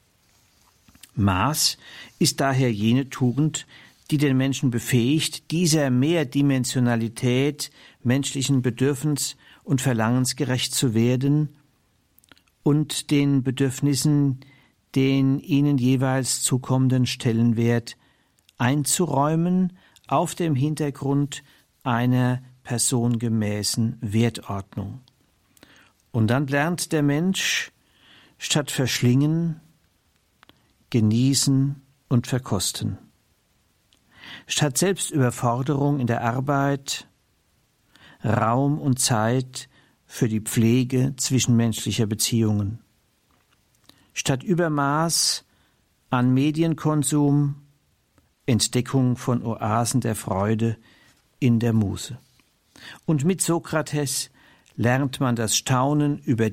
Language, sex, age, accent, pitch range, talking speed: German, male, 50-69, German, 115-145 Hz, 80 wpm